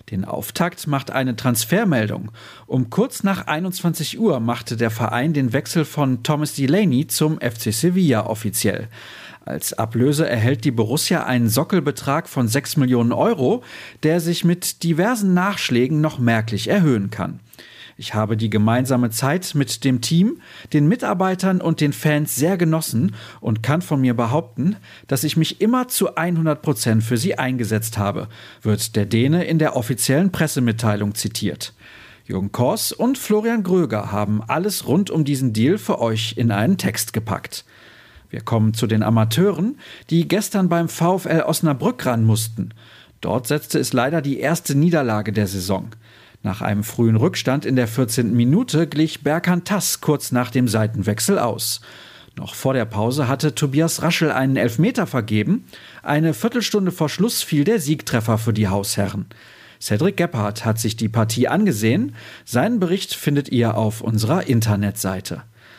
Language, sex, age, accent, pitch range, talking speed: German, male, 40-59, German, 115-165 Hz, 155 wpm